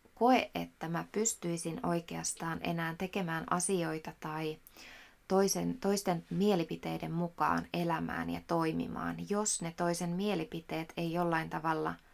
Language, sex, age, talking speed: Finnish, female, 20-39, 110 wpm